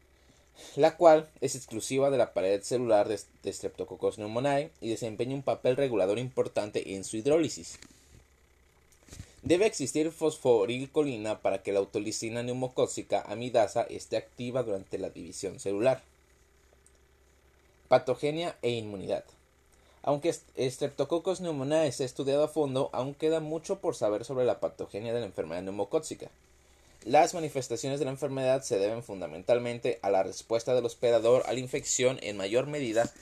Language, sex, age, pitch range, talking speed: Spanish, male, 30-49, 100-145 Hz, 140 wpm